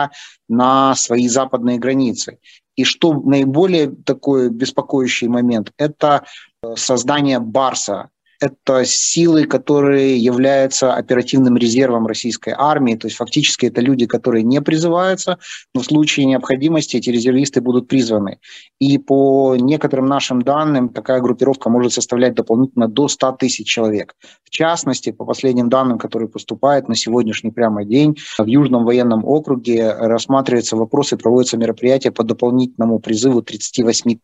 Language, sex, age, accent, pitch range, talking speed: Russian, male, 30-49, native, 120-140 Hz, 130 wpm